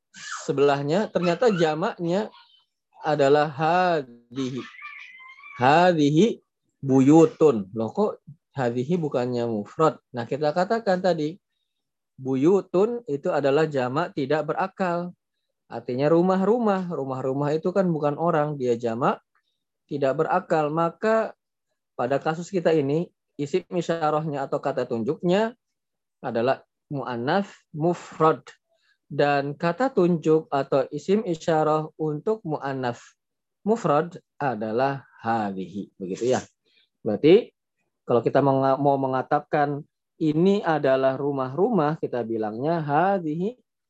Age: 20-39